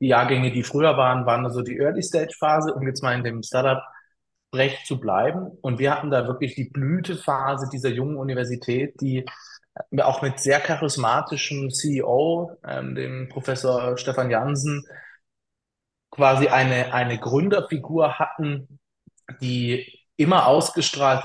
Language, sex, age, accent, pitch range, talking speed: German, male, 20-39, German, 125-150 Hz, 135 wpm